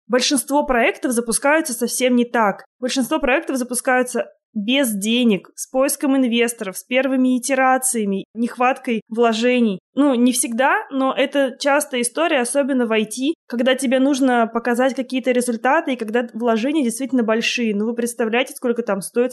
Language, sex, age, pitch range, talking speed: Russian, female, 20-39, 230-270 Hz, 145 wpm